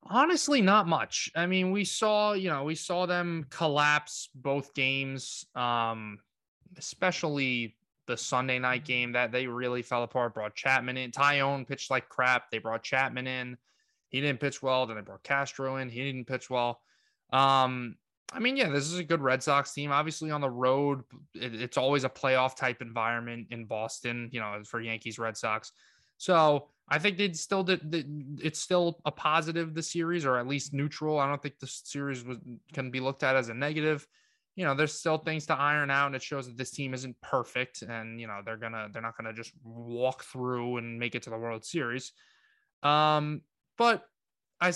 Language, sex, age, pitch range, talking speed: English, male, 20-39, 120-150 Hz, 190 wpm